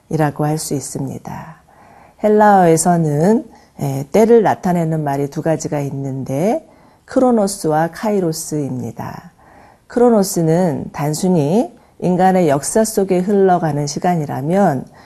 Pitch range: 150-195 Hz